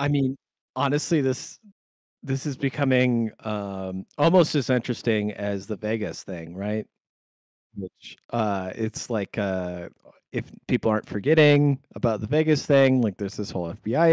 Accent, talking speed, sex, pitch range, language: American, 145 wpm, male, 105-135 Hz, English